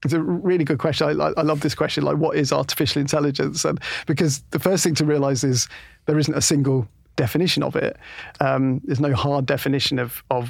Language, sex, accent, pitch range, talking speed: English, male, British, 130-150 Hz, 210 wpm